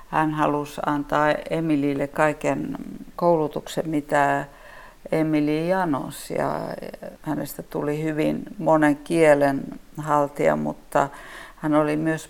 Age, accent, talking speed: 50-69, native, 100 wpm